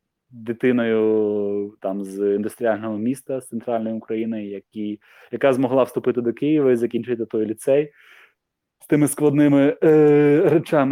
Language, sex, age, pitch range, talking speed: Ukrainian, male, 20-39, 100-130 Hz, 125 wpm